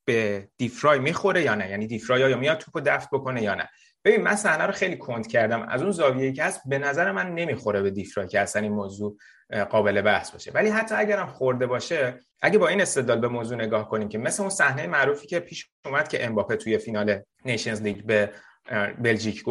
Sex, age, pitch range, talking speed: male, 30-49, 110-150 Hz, 205 wpm